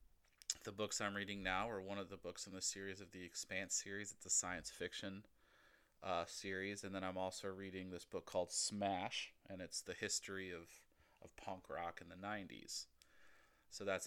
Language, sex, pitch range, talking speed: English, male, 90-100 Hz, 190 wpm